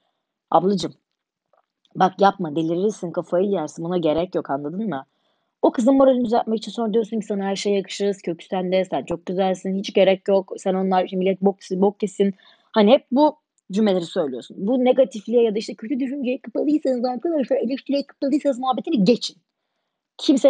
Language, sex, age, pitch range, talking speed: Turkish, female, 30-49, 190-260 Hz, 165 wpm